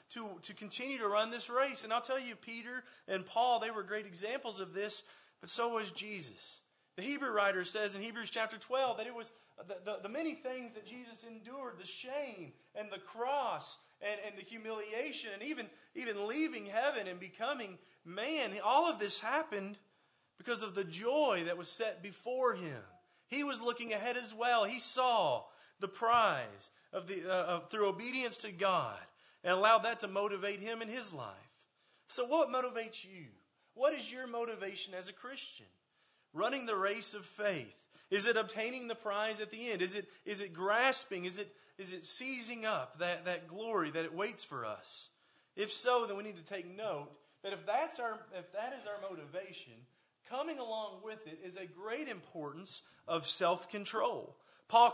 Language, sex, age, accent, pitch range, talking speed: English, male, 30-49, American, 195-240 Hz, 180 wpm